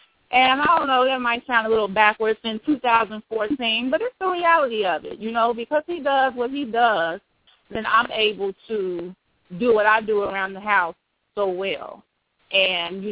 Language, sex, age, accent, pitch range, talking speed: English, female, 30-49, American, 185-230 Hz, 190 wpm